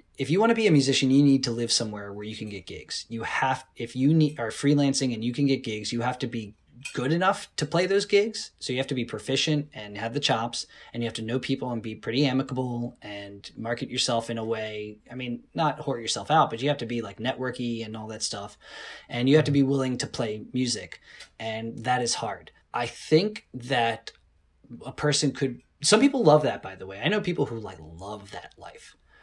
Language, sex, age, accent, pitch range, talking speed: English, male, 20-39, American, 115-145 Hz, 240 wpm